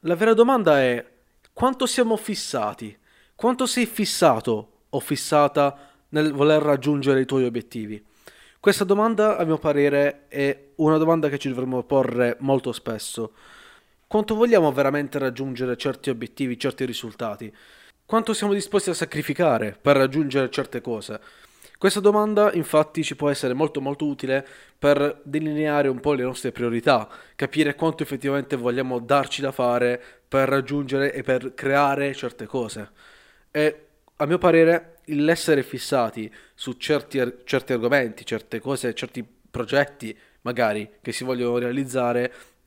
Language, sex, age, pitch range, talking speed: Italian, male, 20-39, 125-155 Hz, 140 wpm